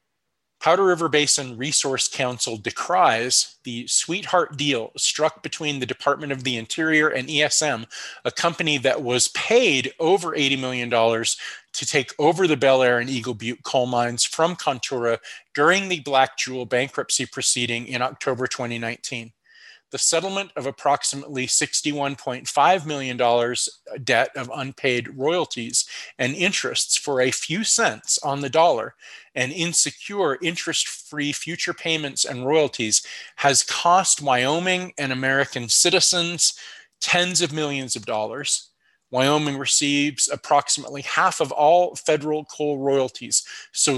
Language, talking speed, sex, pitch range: English, 130 wpm, male, 125-155 Hz